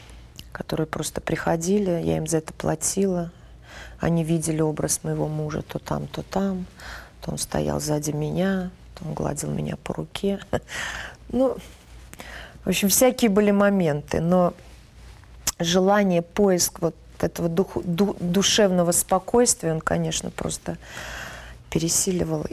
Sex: female